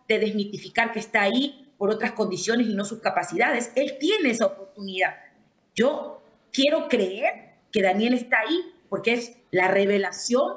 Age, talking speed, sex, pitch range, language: 30-49, 155 wpm, female, 200-265 Hz, English